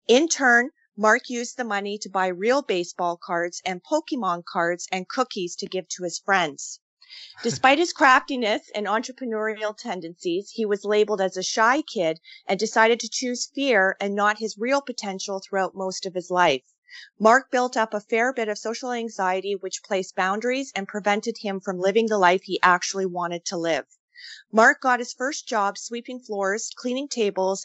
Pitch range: 190-240 Hz